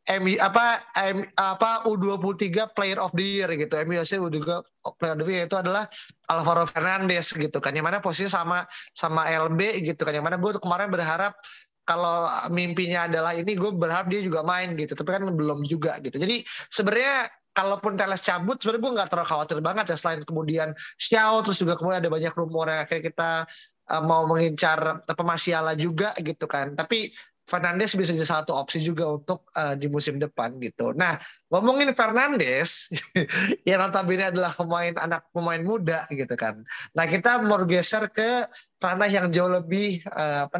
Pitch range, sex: 160-195 Hz, male